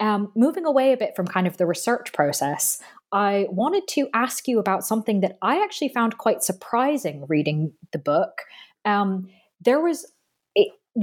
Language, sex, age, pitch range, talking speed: English, female, 20-39, 170-225 Hz, 170 wpm